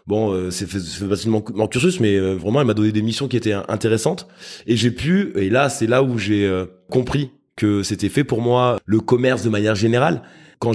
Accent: French